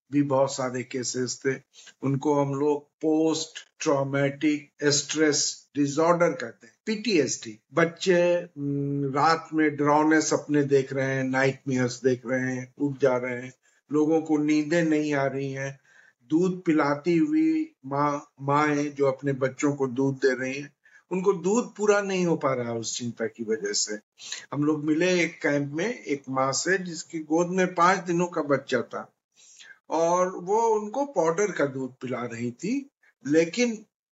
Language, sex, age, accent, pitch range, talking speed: Hindi, male, 50-69, native, 135-175 Hz, 155 wpm